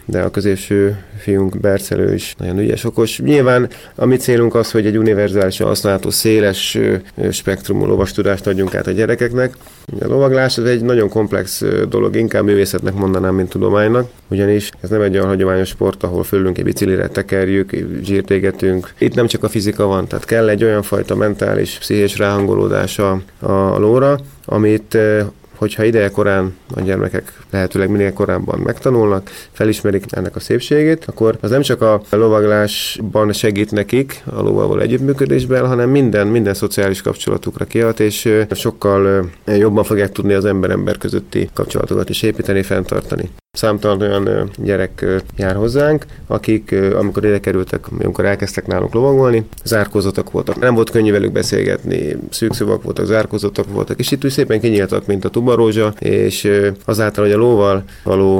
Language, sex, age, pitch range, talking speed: Hungarian, male, 30-49, 95-110 Hz, 150 wpm